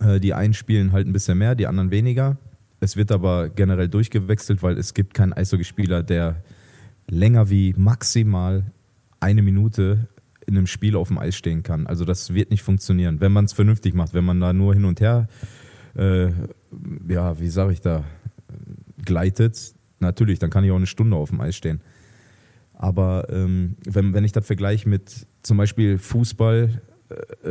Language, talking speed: German, 175 wpm